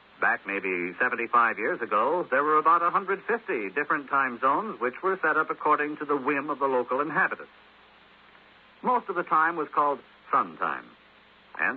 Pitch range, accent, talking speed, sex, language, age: 130-195 Hz, American, 170 wpm, male, English, 60-79